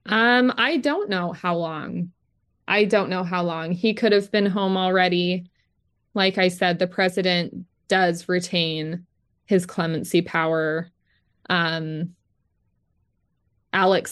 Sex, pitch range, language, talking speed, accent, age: female, 170-195 Hz, English, 125 wpm, American, 20-39